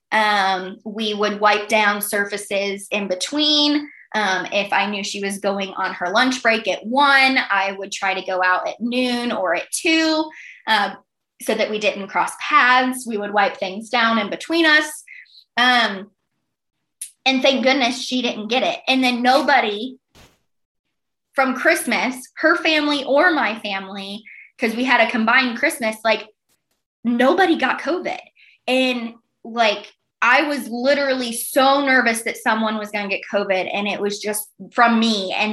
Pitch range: 205-265 Hz